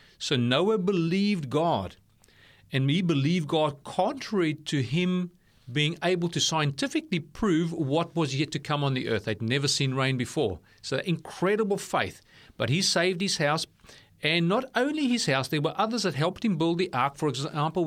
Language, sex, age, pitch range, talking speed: English, male, 40-59, 135-185 Hz, 180 wpm